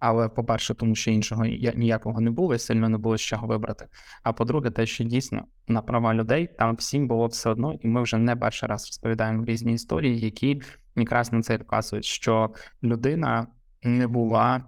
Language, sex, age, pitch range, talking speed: Ukrainian, male, 20-39, 115-120 Hz, 190 wpm